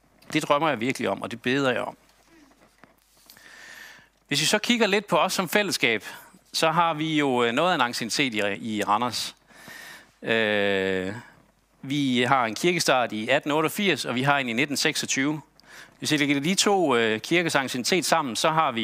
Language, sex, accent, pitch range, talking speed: Danish, male, native, 125-180 Hz, 160 wpm